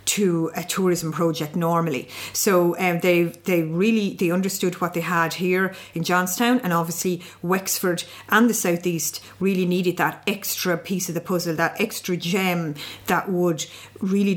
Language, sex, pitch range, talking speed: English, female, 170-190 Hz, 160 wpm